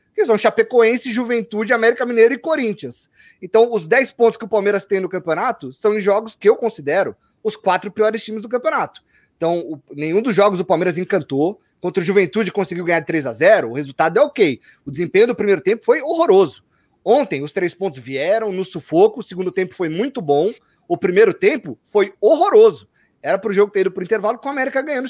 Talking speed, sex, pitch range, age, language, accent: 210 wpm, male, 185-245 Hz, 30-49, Portuguese, Brazilian